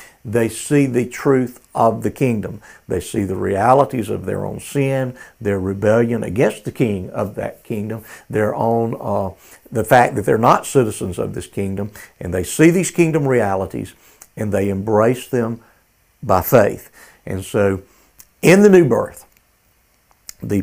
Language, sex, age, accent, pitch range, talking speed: English, male, 60-79, American, 105-130 Hz, 155 wpm